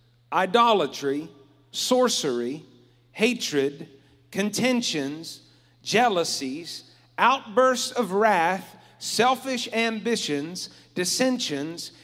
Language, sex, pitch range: English, male, 170-250 Hz